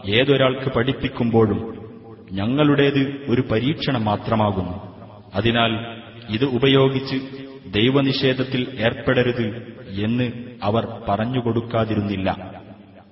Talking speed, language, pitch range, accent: 65 wpm, Malayalam, 105-130 Hz, native